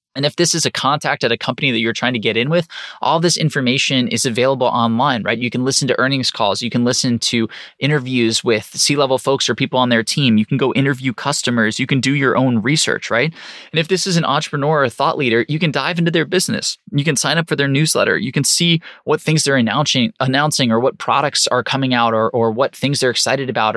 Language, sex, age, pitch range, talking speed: English, male, 20-39, 115-140 Hz, 245 wpm